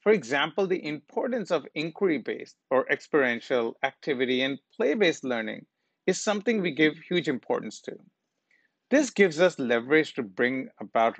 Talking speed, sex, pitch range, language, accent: 150 wpm, male, 125-180 Hz, Hindi, native